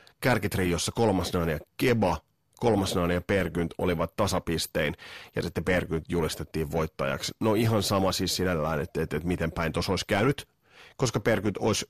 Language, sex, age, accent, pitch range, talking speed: Finnish, male, 30-49, native, 85-110 Hz, 150 wpm